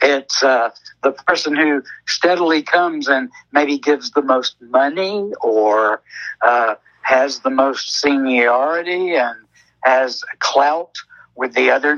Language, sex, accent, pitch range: English, male, American, 125-165 Hz